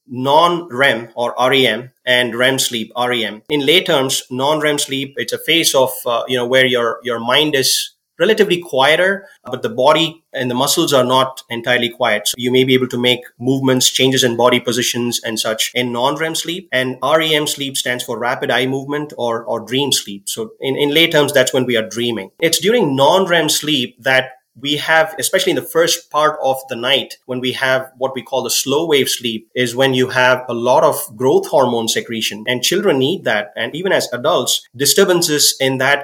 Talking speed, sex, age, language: 210 wpm, male, 30-49, English